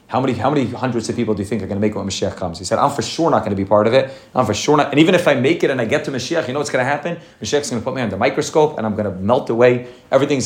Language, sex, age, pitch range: English, male, 30-49, 110-140 Hz